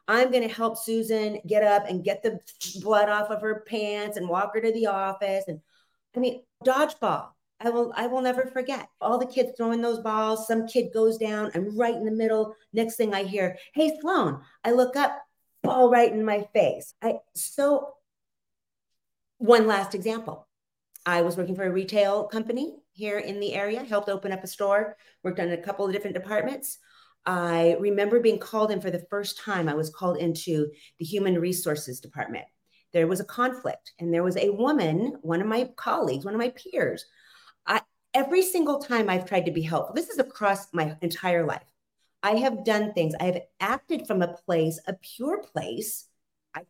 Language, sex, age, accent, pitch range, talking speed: English, female, 40-59, American, 185-240 Hz, 195 wpm